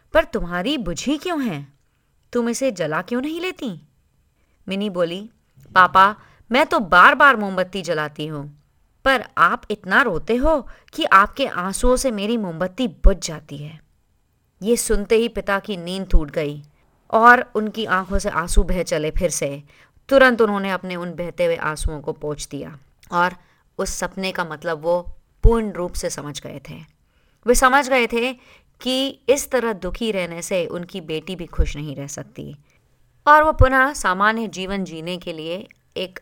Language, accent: Hindi, native